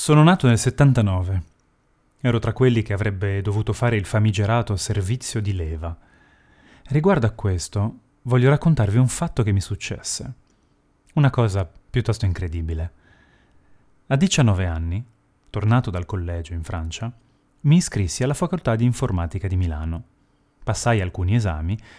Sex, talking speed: male, 135 wpm